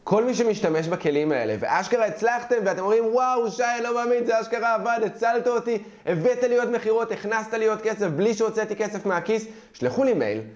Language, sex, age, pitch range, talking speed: Hebrew, male, 20-39, 150-215 Hz, 175 wpm